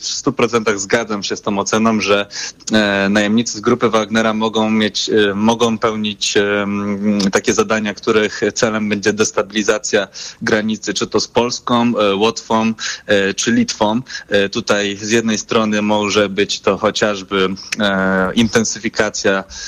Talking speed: 115 wpm